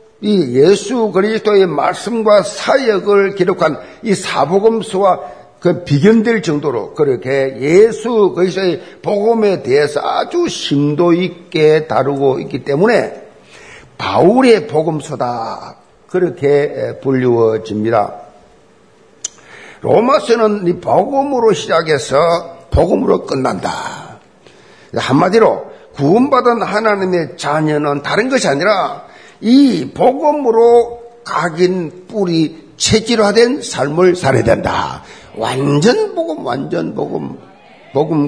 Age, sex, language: 50-69, male, Korean